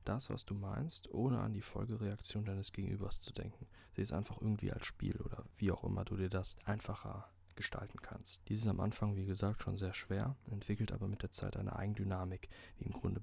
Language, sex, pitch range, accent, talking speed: German, male, 95-110 Hz, German, 215 wpm